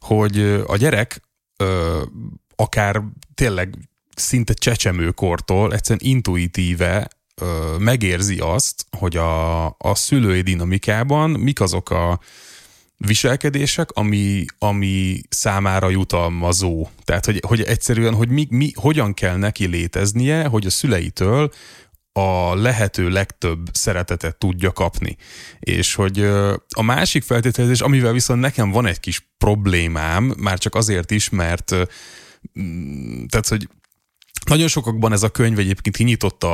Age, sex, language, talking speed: 20-39, male, Hungarian, 120 wpm